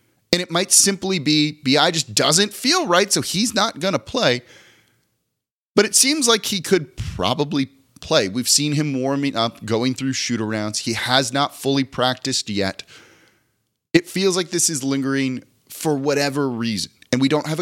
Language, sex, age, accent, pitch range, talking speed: English, male, 30-49, American, 115-160 Hz, 175 wpm